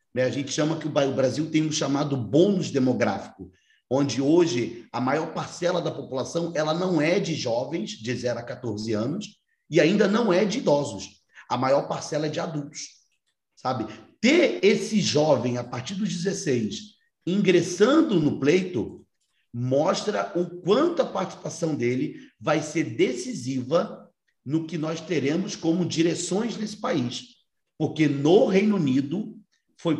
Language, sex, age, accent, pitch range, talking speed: Portuguese, male, 40-59, Brazilian, 130-180 Hz, 145 wpm